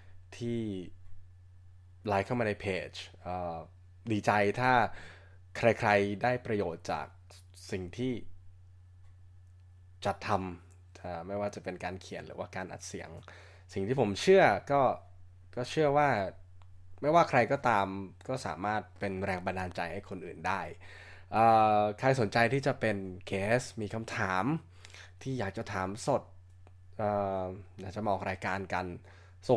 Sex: male